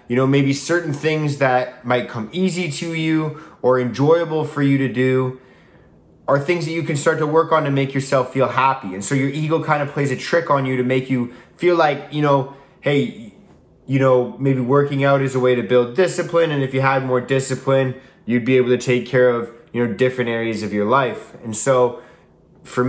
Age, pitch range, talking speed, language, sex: 20-39, 125-145 Hz, 220 wpm, English, male